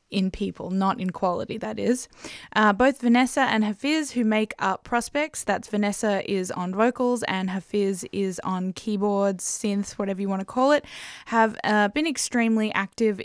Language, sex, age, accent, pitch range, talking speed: English, female, 10-29, Australian, 195-225 Hz, 170 wpm